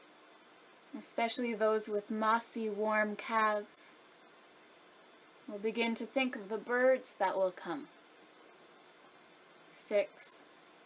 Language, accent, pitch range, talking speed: English, American, 200-245 Hz, 95 wpm